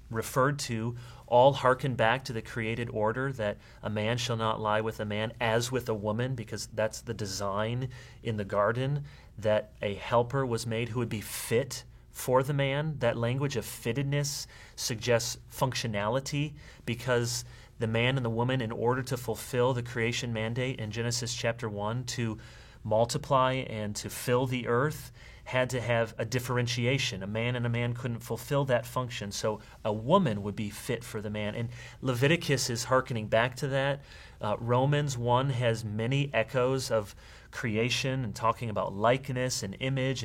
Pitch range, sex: 110-130 Hz, male